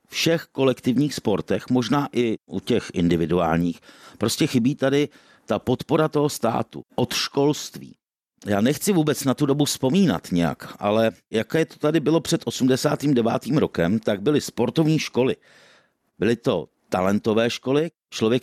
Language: Czech